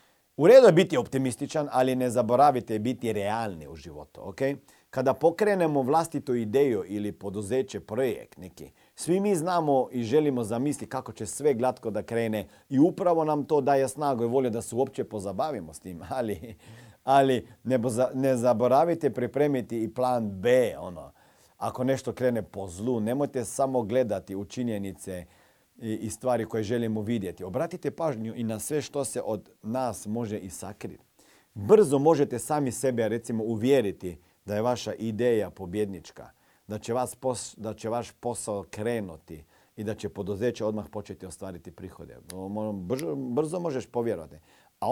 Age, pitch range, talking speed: 40-59, 100-130 Hz, 155 wpm